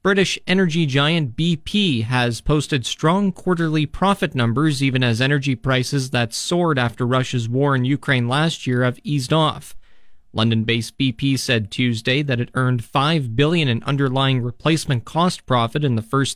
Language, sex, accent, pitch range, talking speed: English, male, American, 120-150 Hz, 160 wpm